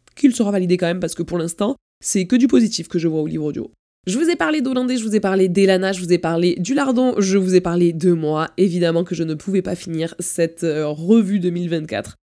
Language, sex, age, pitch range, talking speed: French, female, 20-39, 175-205 Hz, 250 wpm